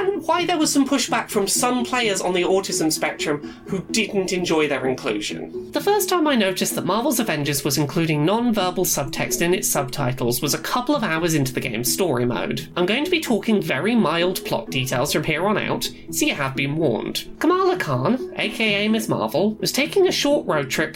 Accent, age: British, 20-39